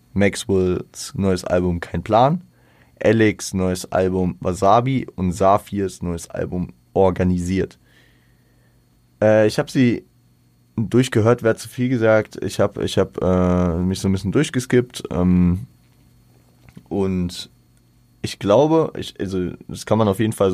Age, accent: 20-39, German